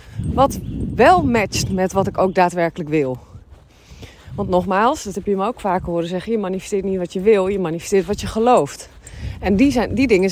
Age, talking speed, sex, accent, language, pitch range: 30-49, 205 wpm, female, Dutch, Dutch, 195-275 Hz